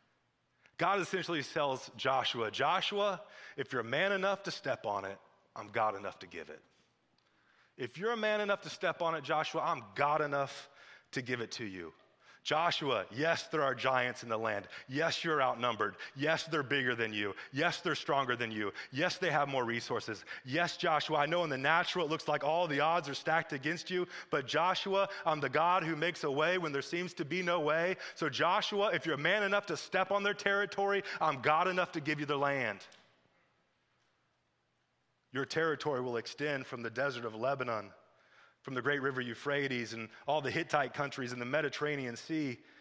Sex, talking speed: male, 195 wpm